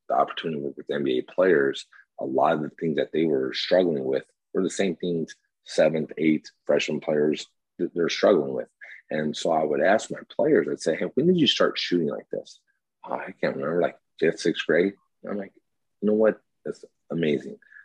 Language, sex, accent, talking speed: English, male, American, 205 wpm